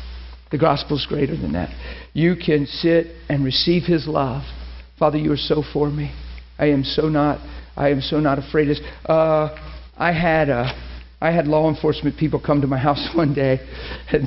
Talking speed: 190 wpm